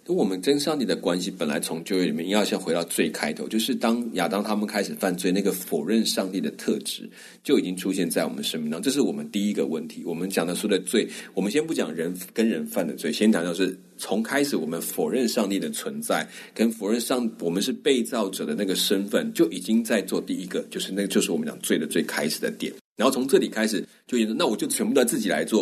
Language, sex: Chinese, male